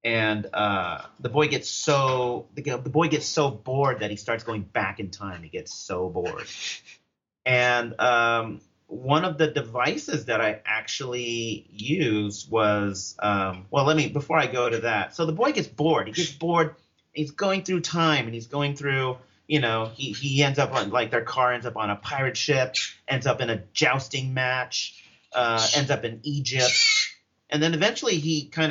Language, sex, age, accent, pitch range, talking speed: English, male, 30-49, American, 110-145 Hz, 190 wpm